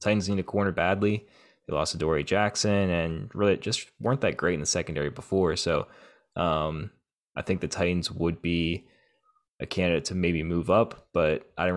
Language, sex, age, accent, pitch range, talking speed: English, male, 20-39, American, 85-100 Hz, 185 wpm